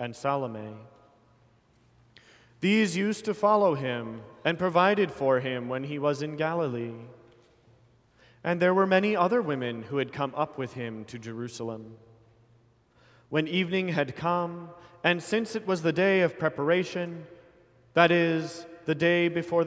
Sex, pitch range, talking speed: male, 125-170 Hz, 145 wpm